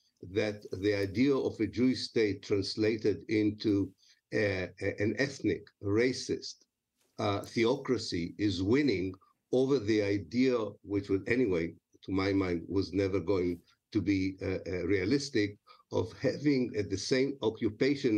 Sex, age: male, 50-69